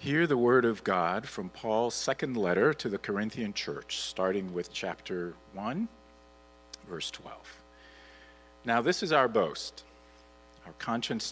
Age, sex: 40-59, male